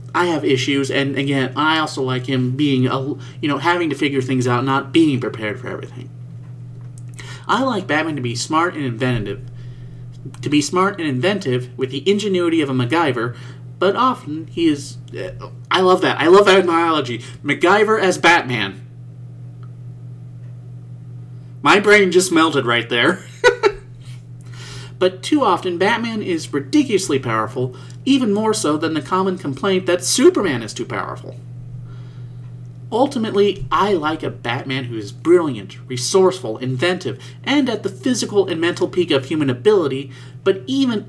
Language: English